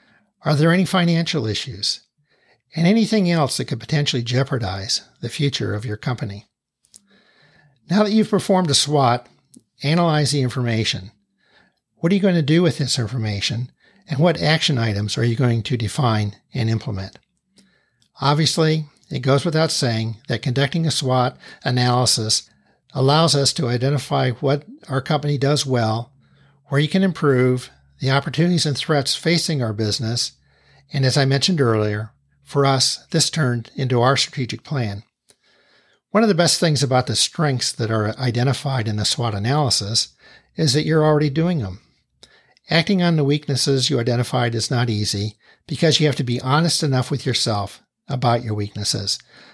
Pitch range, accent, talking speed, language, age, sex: 115-155 Hz, American, 160 wpm, English, 60-79, male